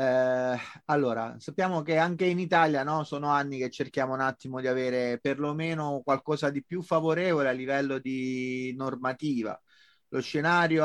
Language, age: Italian, 30-49